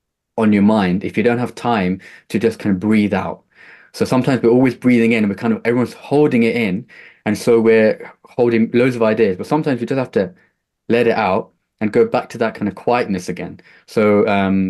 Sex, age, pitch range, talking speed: male, 20-39, 95-115 Hz, 225 wpm